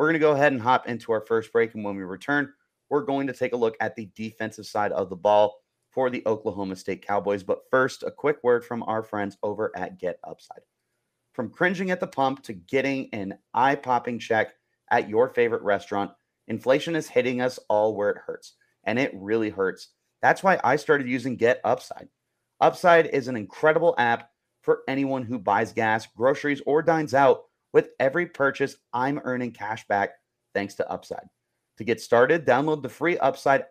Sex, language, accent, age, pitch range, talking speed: male, English, American, 30-49, 110-155 Hz, 195 wpm